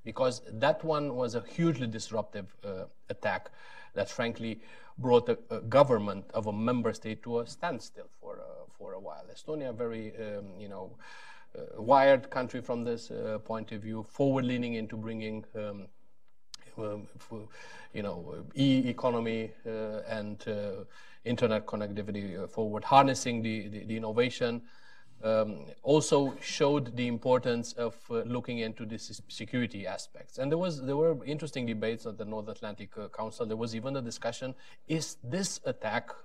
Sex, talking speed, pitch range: male, 155 wpm, 110-130 Hz